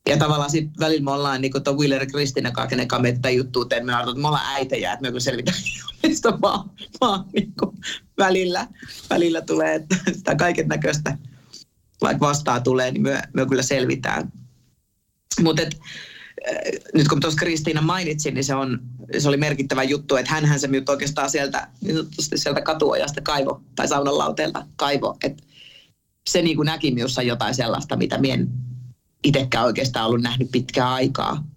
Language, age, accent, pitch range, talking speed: Finnish, 30-49, native, 125-150 Hz, 155 wpm